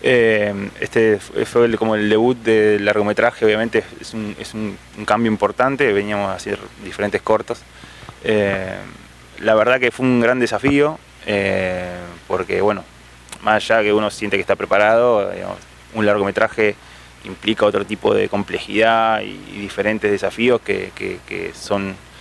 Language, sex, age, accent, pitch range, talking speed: Spanish, male, 20-39, Argentinian, 95-115 Hz, 155 wpm